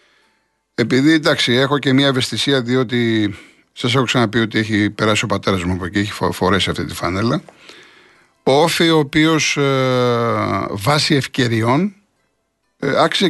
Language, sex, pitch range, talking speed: Greek, male, 110-150 Hz, 140 wpm